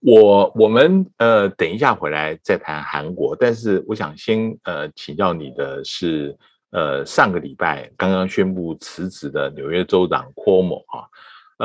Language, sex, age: Chinese, male, 50-69